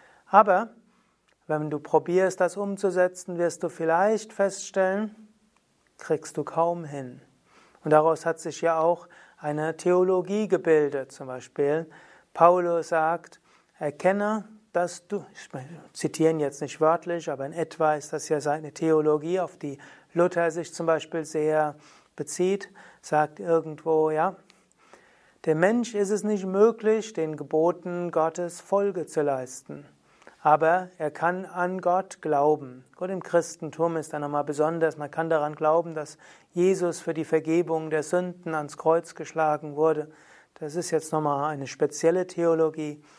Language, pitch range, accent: German, 155-185 Hz, German